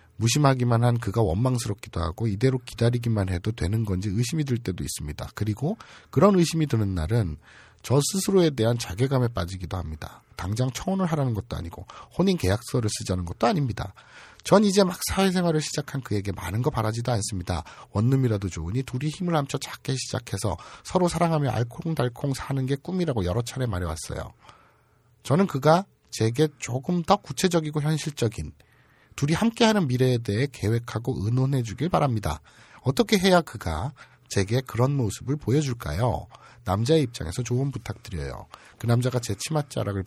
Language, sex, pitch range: Korean, male, 105-145 Hz